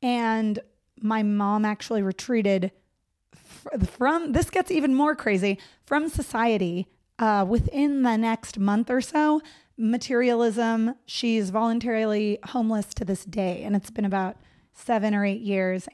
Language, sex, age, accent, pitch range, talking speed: English, female, 30-49, American, 210-275 Hz, 130 wpm